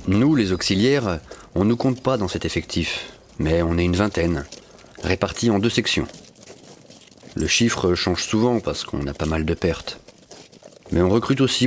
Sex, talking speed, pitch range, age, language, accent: male, 180 wpm, 85-120 Hz, 40-59, French, French